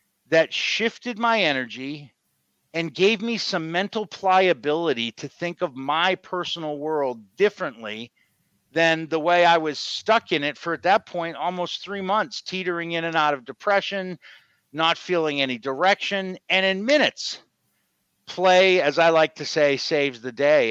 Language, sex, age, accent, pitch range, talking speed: English, male, 50-69, American, 155-195 Hz, 155 wpm